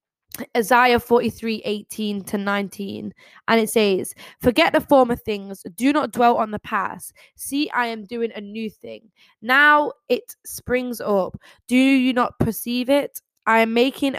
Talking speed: 155 wpm